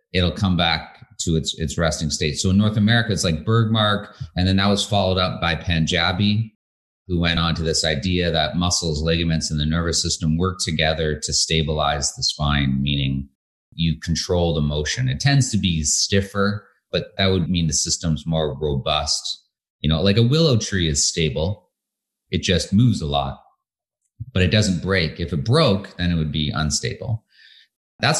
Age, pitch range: 30-49, 80-105 Hz